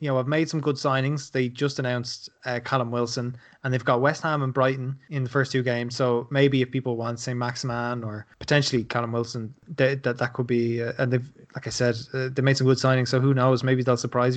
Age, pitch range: 20-39, 120-135 Hz